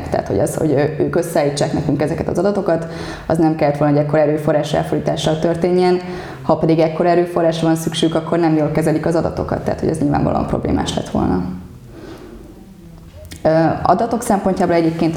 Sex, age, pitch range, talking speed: female, 20-39, 145-170 Hz, 160 wpm